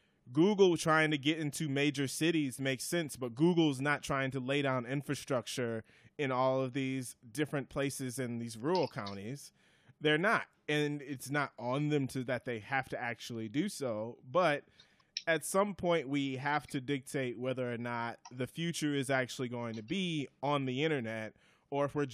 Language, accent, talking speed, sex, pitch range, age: English, American, 180 wpm, male, 125-145 Hz, 20-39